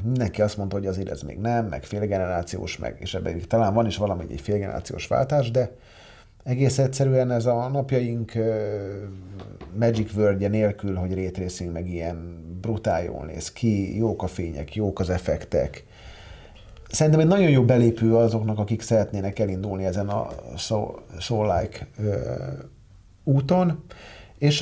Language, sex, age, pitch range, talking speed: Hungarian, male, 40-59, 95-115 Hz, 140 wpm